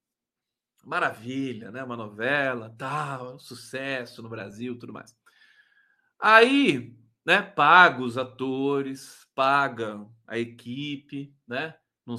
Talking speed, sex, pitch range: 110 wpm, male, 120-175 Hz